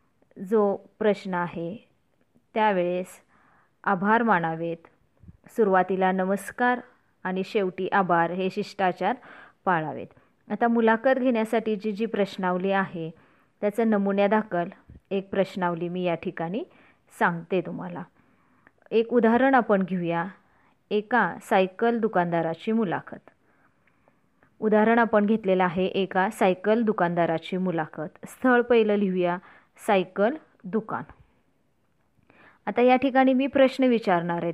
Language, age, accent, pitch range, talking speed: Marathi, 20-39, native, 180-225 Hz, 100 wpm